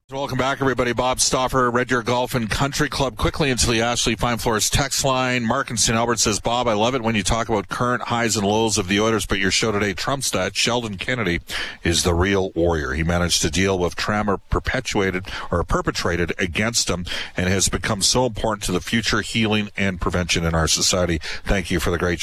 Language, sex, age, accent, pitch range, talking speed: English, male, 40-59, American, 95-130 Hz, 220 wpm